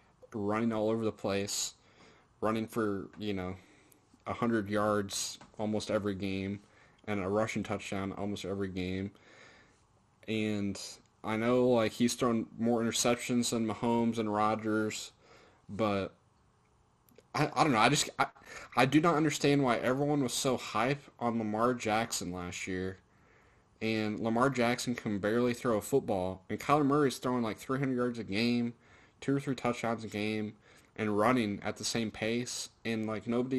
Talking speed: 160 wpm